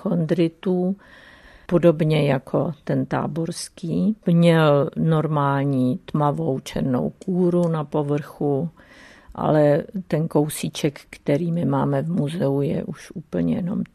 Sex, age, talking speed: female, 50-69, 105 wpm